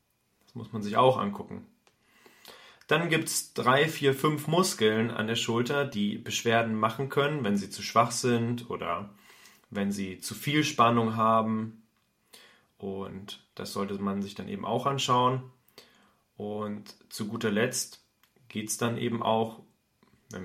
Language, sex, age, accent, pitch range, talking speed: German, male, 30-49, German, 105-130 Hz, 145 wpm